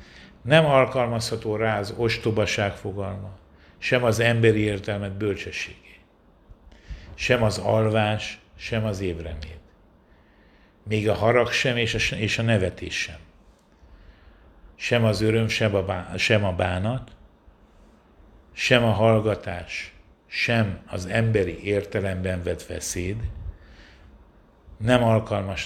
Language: Hungarian